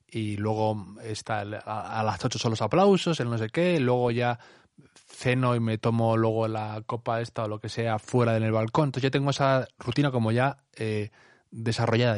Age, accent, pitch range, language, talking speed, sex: 20-39, Spanish, 110-140 Hz, Spanish, 210 wpm, male